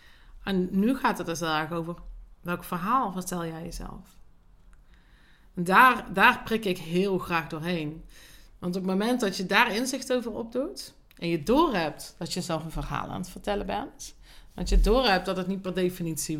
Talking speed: 185 wpm